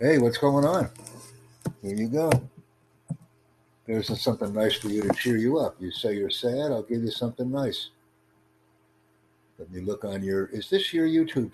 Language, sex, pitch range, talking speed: English, male, 90-120 Hz, 175 wpm